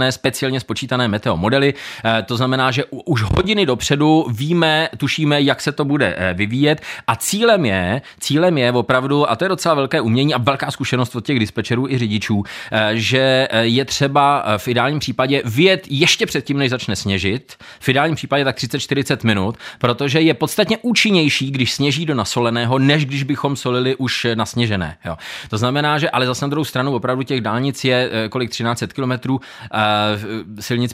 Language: Czech